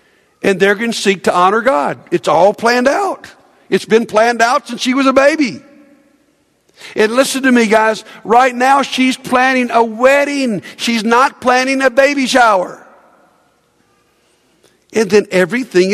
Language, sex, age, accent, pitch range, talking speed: English, male, 50-69, American, 185-260 Hz, 155 wpm